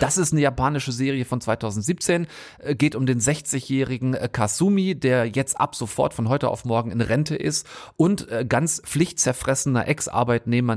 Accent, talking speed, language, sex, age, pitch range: German, 150 wpm, German, male, 30-49, 110-140 Hz